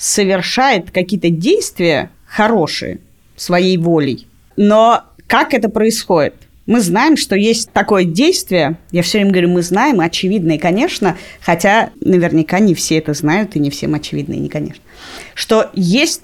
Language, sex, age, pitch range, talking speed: Russian, female, 30-49, 170-245 Hz, 140 wpm